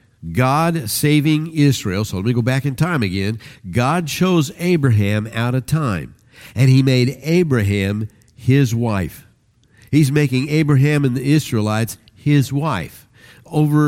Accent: American